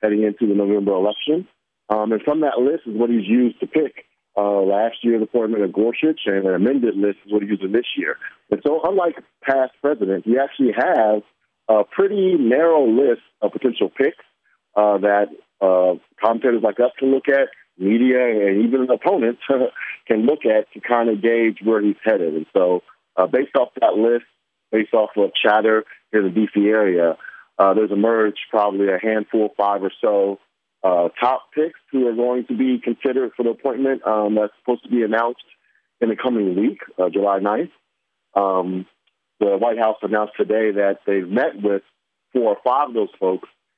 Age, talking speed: 40-59, 185 wpm